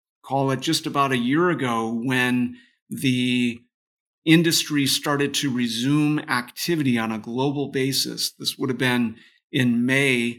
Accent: American